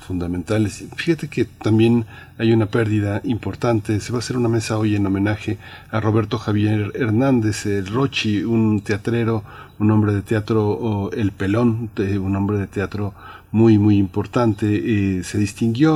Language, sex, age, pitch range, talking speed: Spanish, male, 40-59, 95-115 Hz, 160 wpm